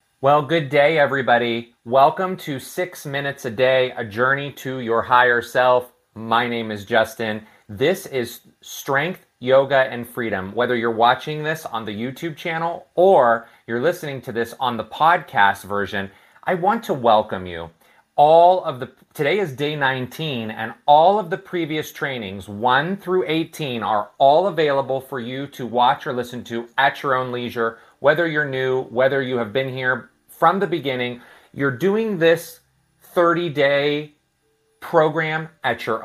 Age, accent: 30-49, American